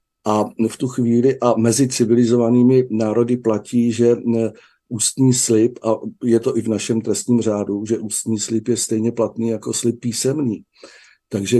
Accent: native